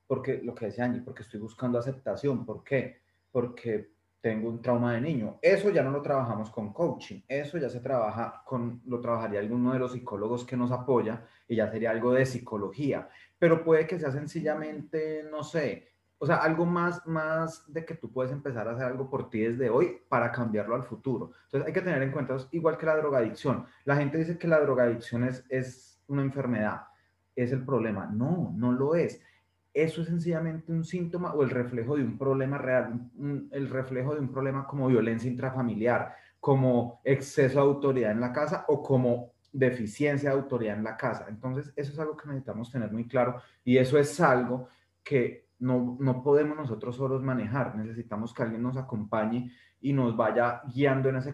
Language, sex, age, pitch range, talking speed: Spanish, male, 30-49, 120-145 Hz, 195 wpm